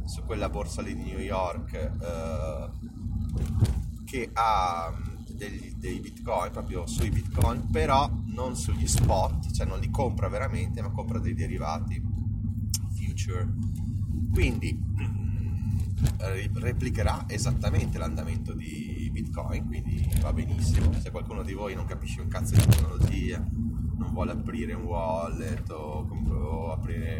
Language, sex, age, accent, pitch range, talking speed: Italian, male, 30-49, native, 85-110 Hz, 120 wpm